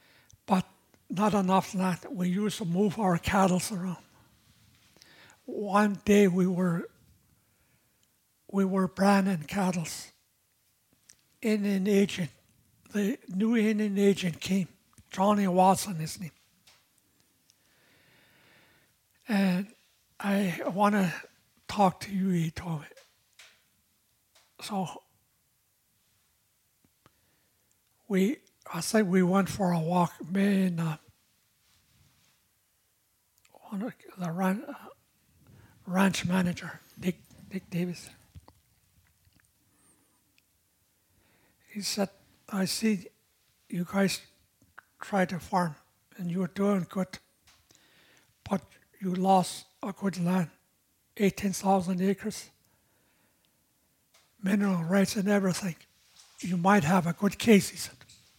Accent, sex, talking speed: American, male, 95 wpm